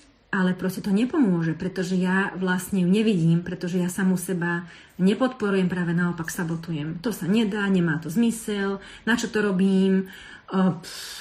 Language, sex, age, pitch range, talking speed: Slovak, female, 30-49, 170-195 Hz, 150 wpm